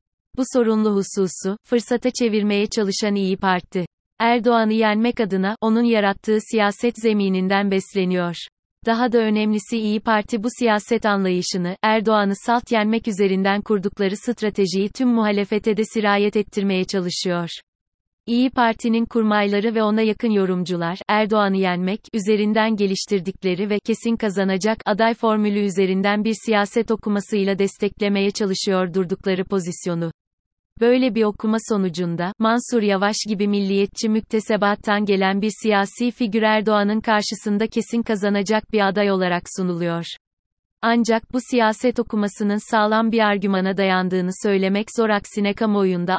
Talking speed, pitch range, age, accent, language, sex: 120 wpm, 190-220 Hz, 30-49, native, Turkish, female